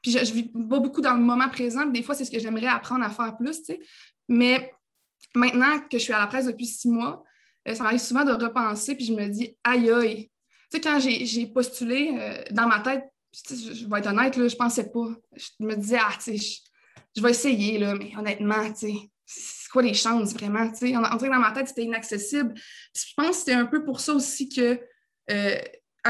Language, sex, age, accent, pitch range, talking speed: French, female, 20-39, Canadian, 230-275 Hz, 215 wpm